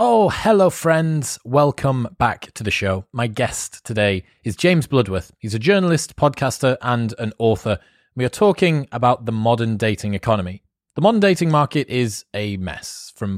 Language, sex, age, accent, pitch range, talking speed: English, male, 30-49, British, 115-150 Hz, 165 wpm